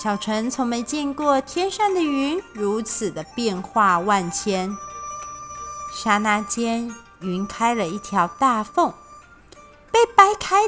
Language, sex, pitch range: Chinese, female, 195-280 Hz